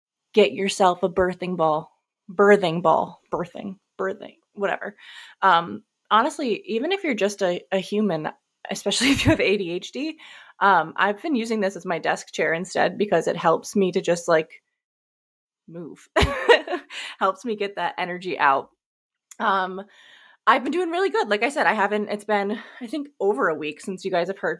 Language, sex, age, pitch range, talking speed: English, female, 20-39, 185-230 Hz, 175 wpm